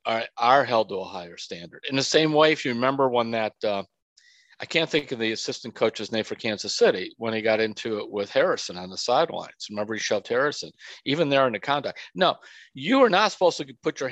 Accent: American